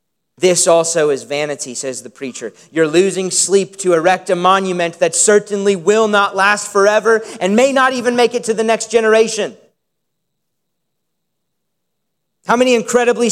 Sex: male